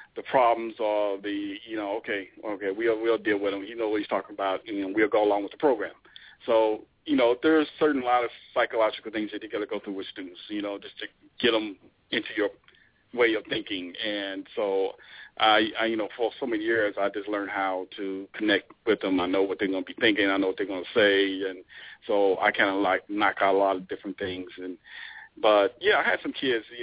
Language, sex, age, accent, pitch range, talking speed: English, male, 40-59, American, 100-145 Hz, 250 wpm